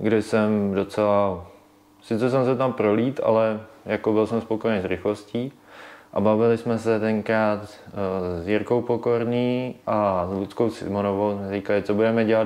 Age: 20-39